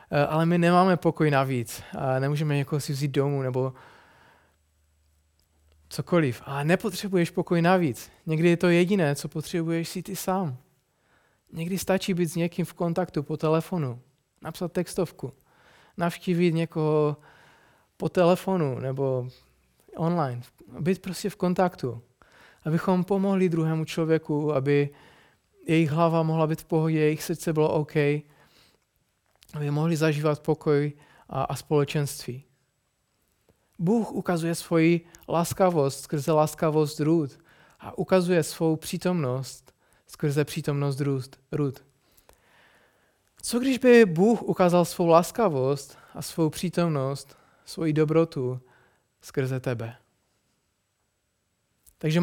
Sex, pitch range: male, 135-175 Hz